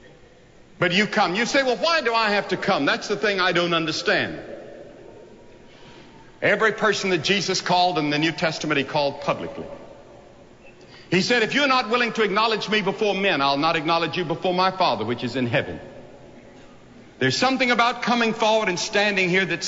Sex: male